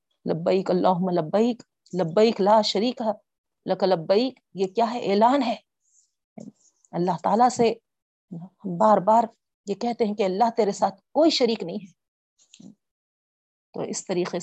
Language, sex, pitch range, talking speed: Urdu, female, 175-215 Hz, 135 wpm